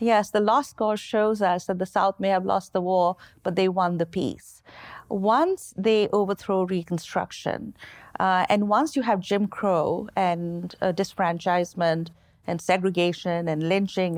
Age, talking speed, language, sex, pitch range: 50-69, 155 wpm, English, female, 180-220 Hz